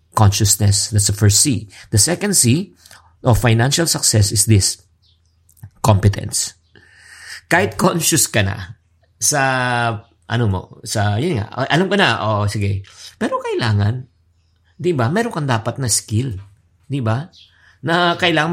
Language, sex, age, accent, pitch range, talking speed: English, male, 50-69, Filipino, 105-140 Hz, 135 wpm